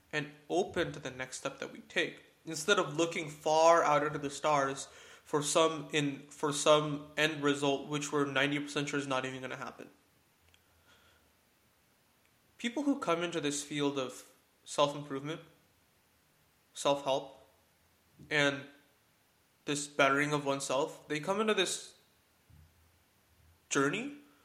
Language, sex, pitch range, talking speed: English, male, 135-155 Hz, 130 wpm